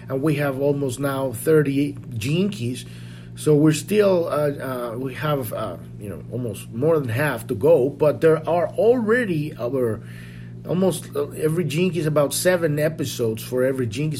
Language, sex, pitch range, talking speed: English, male, 120-170 Hz, 160 wpm